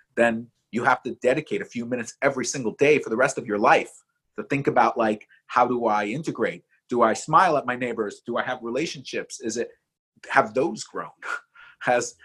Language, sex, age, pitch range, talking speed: English, male, 30-49, 110-140 Hz, 200 wpm